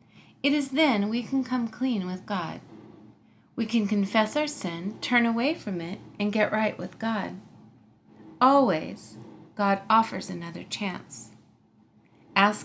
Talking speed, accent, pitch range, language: 140 wpm, American, 190-245 Hz, English